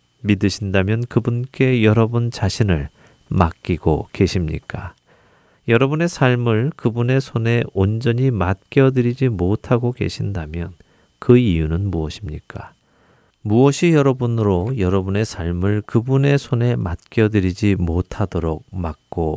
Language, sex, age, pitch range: Korean, male, 40-59, 95-125 Hz